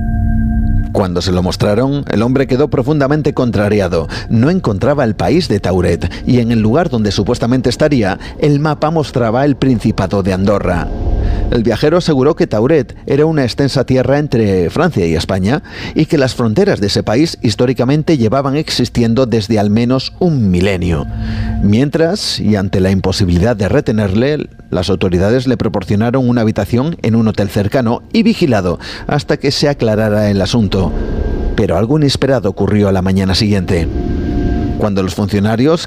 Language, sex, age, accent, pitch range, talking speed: Spanish, male, 40-59, Spanish, 100-130 Hz, 155 wpm